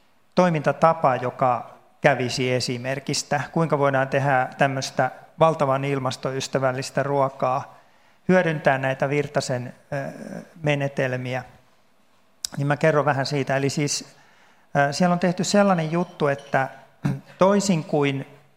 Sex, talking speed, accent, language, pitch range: male, 95 wpm, native, Finnish, 135-160 Hz